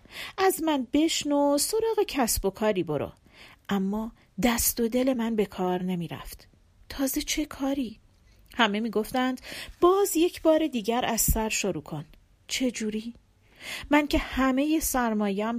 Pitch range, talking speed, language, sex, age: 190-250 Hz, 135 wpm, Persian, female, 40-59